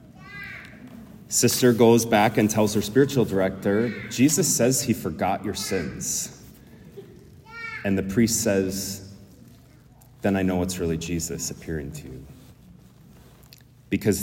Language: English